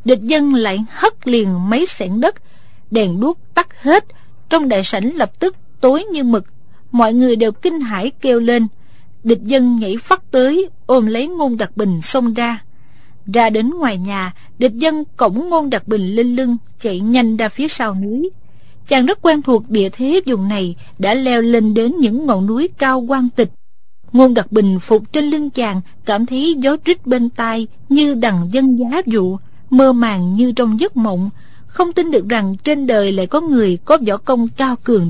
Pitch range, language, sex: 220-290 Hz, Vietnamese, female